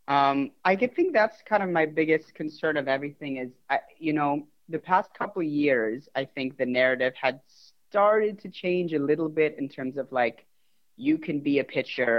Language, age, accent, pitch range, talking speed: English, 30-49, American, 125-155 Hz, 190 wpm